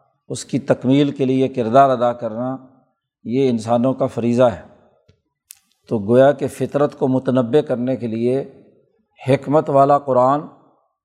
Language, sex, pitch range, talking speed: Urdu, male, 125-145 Hz, 135 wpm